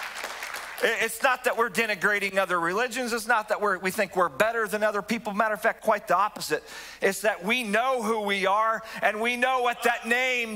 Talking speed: 205 wpm